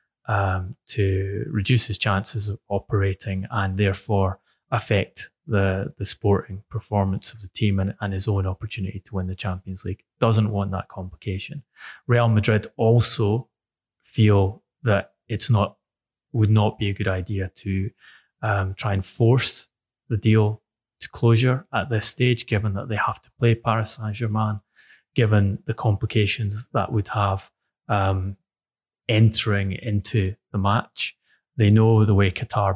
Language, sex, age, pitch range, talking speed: English, male, 20-39, 95-115 Hz, 150 wpm